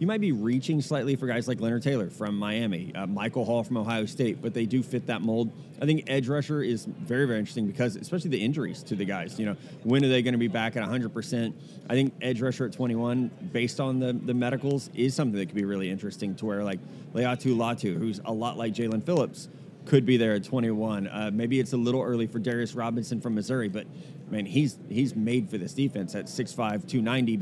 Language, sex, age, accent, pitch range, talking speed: English, male, 30-49, American, 115-140 Hz, 235 wpm